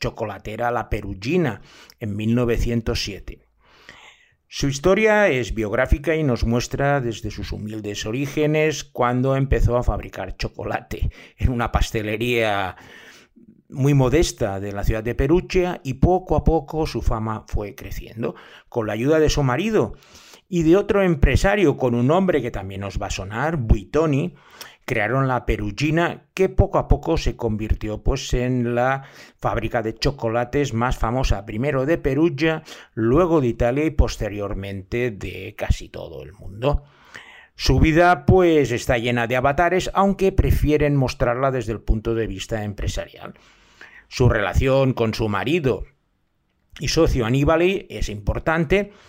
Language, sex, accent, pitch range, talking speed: Spanish, male, Spanish, 110-155 Hz, 140 wpm